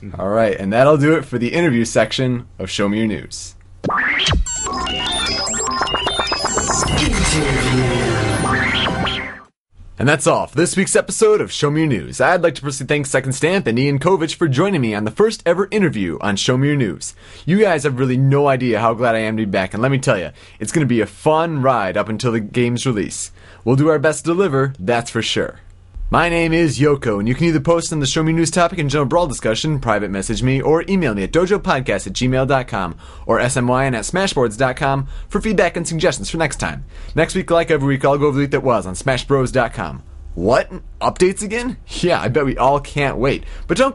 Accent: American